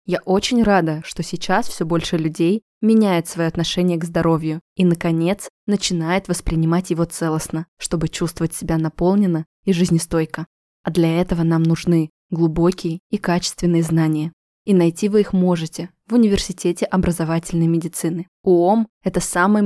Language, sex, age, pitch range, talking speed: Russian, female, 20-39, 165-185 Hz, 140 wpm